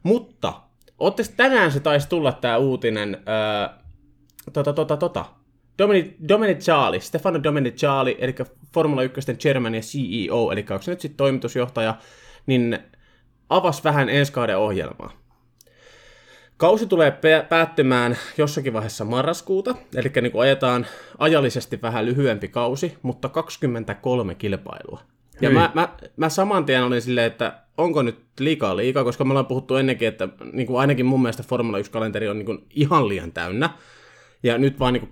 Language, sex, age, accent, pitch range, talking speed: Finnish, male, 20-39, native, 110-150 Hz, 145 wpm